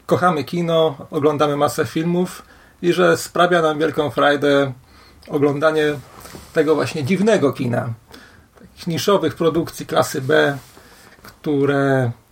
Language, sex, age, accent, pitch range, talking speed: Polish, male, 40-59, native, 140-175 Hz, 105 wpm